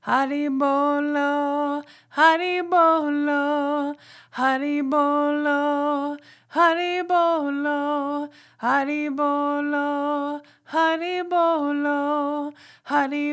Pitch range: 290-310 Hz